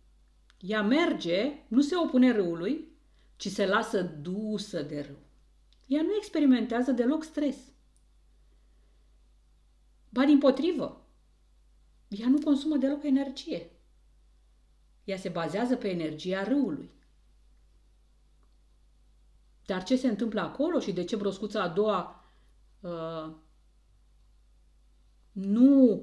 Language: Romanian